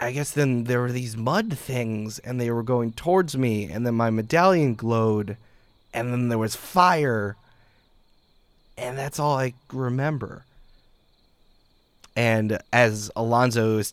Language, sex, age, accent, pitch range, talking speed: English, male, 20-39, American, 105-125 Hz, 140 wpm